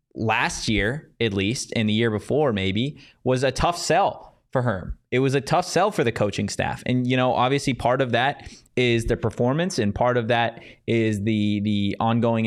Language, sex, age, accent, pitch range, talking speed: English, male, 20-39, American, 105-130 Hz, 200 wpm